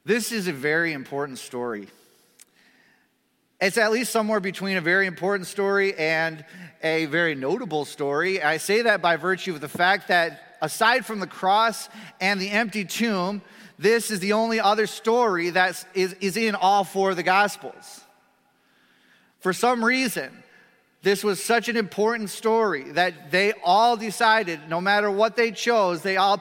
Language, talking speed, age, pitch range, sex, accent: English, 165 wpm, 30-49, 170-210 Hz, male, American